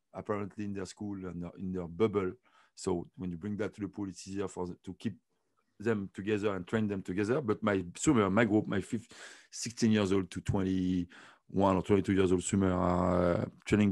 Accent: French